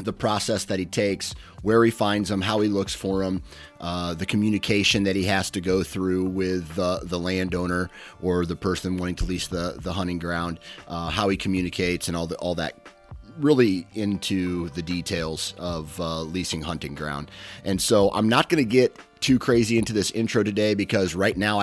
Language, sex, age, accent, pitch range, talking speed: English, male, 30-49, American, 85-100 Hz, 195 wpm